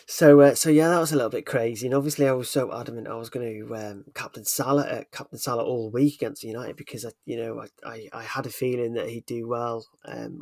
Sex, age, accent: male, 30-49, British